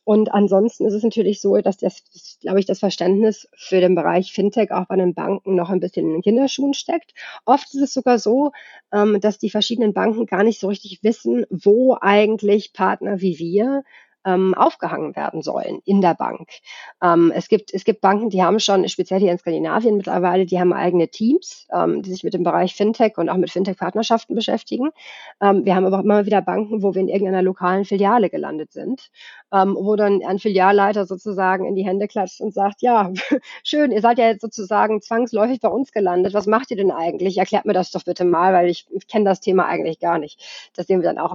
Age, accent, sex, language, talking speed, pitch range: 40-59, German, female, German, 205 wpm, 185-215 Hz